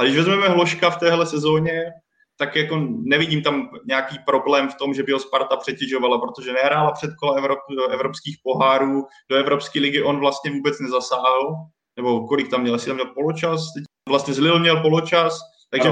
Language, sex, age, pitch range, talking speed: Czech, male, 20-39, 140-170 Hz, 175 wpm